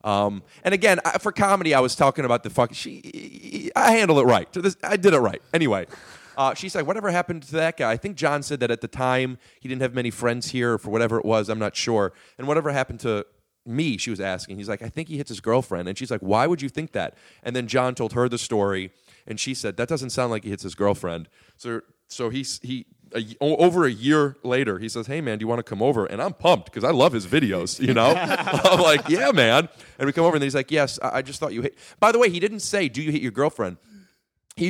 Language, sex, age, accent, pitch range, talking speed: English, male, 30-49, American, 115-155 Hz, 265 wpm